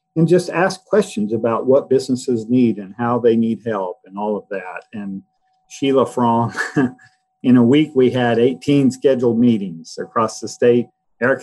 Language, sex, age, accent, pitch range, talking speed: English, male, 50-69, American, 115-185 Hz, 170 wpm